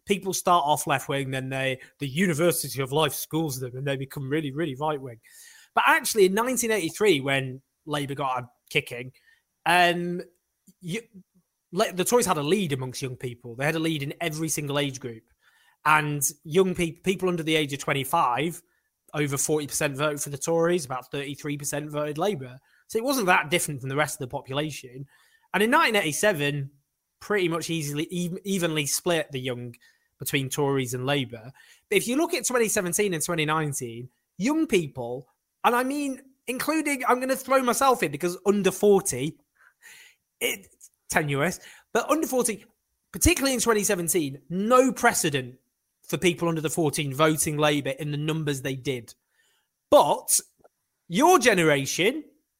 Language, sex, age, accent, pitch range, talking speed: English, male, 20-39, British, 140-200 Hz, 155 wpm